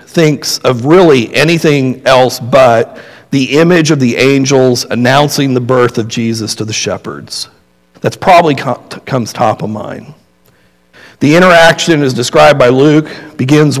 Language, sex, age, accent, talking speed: English, male, 50-69, American, 140 wpm